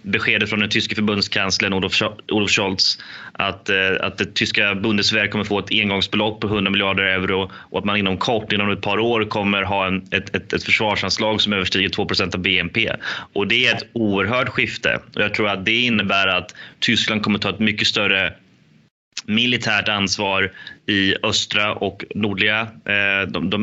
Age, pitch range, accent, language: 20-39, 95-110 Hz, native, Swedish